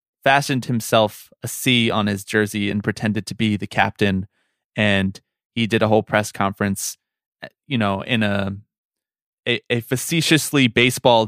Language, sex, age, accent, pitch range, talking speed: English, male, 20-39, American, 105-150 Hz, 150 wpm